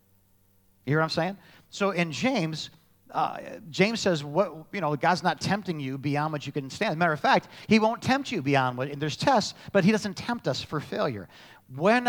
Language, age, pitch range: English, 40-59, 145-185 Hz